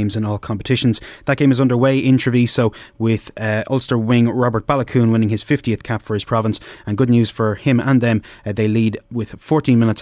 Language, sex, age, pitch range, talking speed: English, male, 20-39, 110-130 Hz, 210 wpm